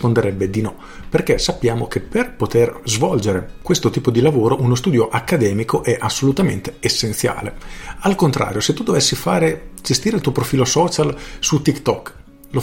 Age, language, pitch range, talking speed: 40-59, Italian, 110-135 Hz, 155 wpm